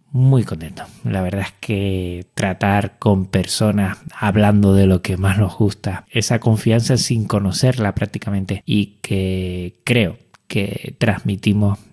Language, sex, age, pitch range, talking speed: Spanish, male, 20-39, 95-110 Hz, 130 wpm